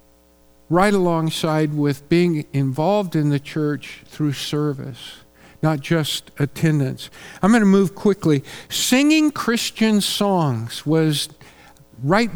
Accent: American